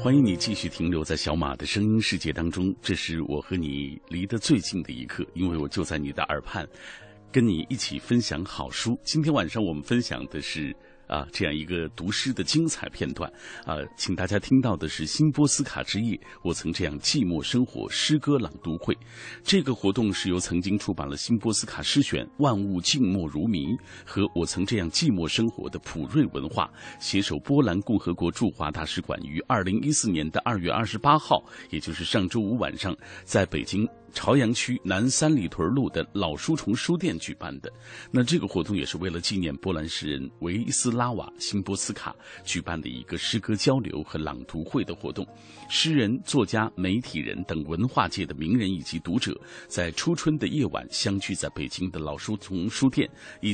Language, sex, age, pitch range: Chinese, male, 50-69, 85-125 Hz